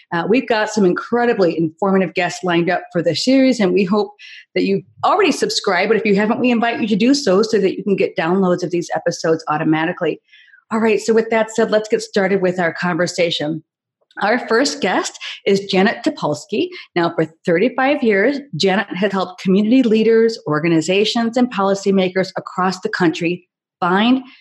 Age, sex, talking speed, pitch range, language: 40-59, female, 180 wpm, 170-225 Hz, English